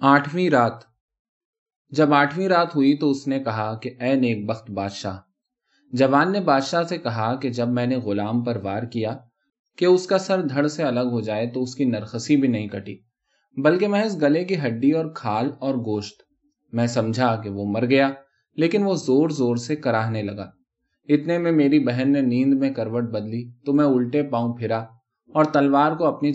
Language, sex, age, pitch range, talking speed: Urdu, male, 20-39, 115-150 Hz, 195 wpm